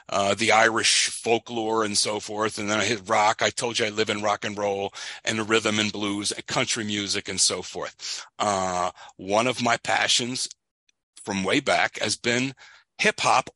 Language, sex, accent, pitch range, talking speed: English, male, American, 105-140 Hz, 190 wpm